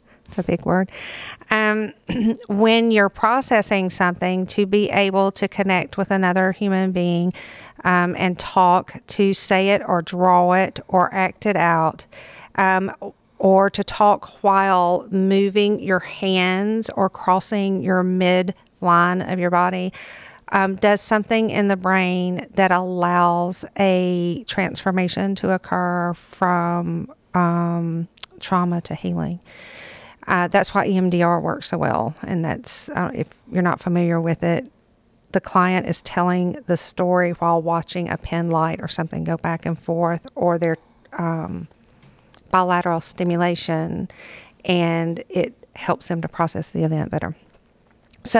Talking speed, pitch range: 135 wpm, 175-195 Hz